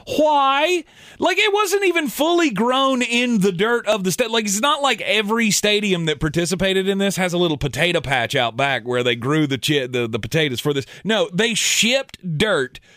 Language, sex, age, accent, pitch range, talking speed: English, male, 30-49, American, 120-185 Hz, 205 wpm